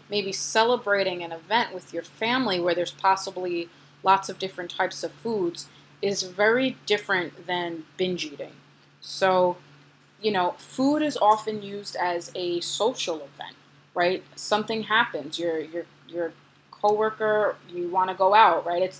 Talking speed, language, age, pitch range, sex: 150 wpm, English, 30-49, 175-220 Hz, female